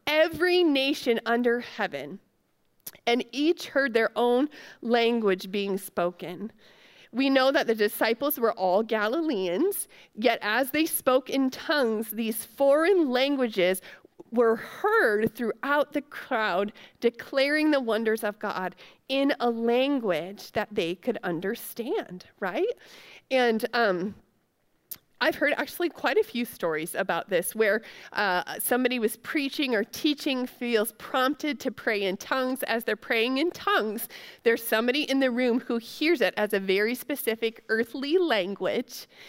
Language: English